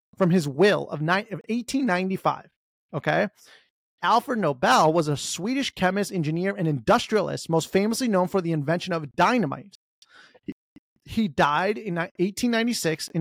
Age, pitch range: 30-49, 155-195 Hz